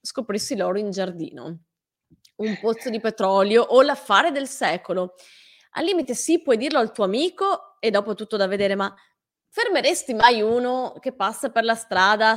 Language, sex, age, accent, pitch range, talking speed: Italian, female, 20-39, native, 205-290 Hz, 165 wpm